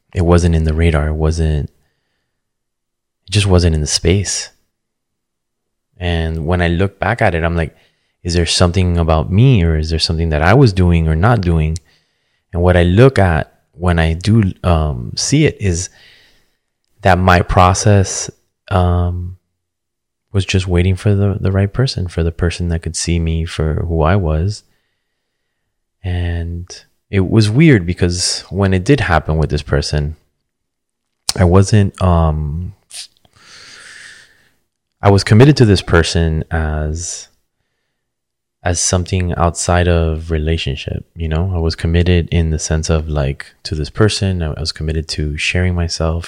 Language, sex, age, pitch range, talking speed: English, male, 20-39, 80-95 Hz, 155 wpm